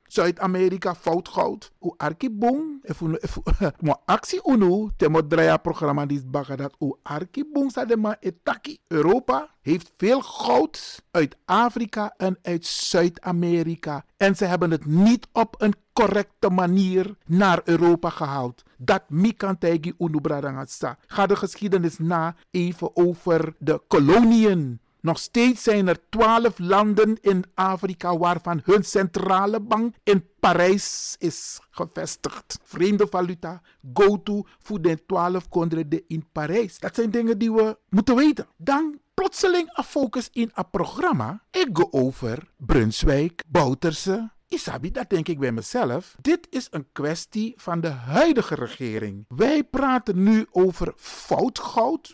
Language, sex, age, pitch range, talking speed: Dutch, male, 50-69, 165-225 Hz, 135 wpm